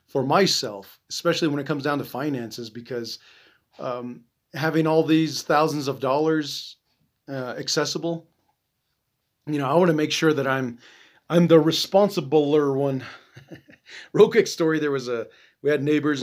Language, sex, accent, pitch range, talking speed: English, male, American, 130-160 Hz, 150 wpm